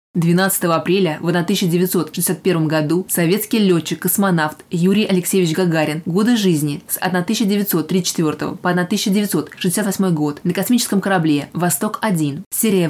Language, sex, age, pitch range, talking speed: Russian, female, 20-39, 170-195 Hz, 100 wpm